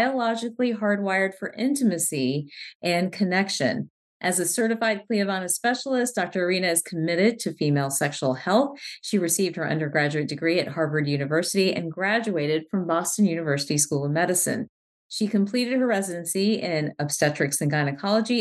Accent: American